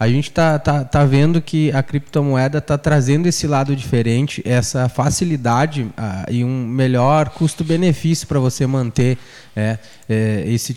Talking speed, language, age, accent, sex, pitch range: 130 wpm, Portuguese, 20-39, Brazilian, male, 130-170 Hz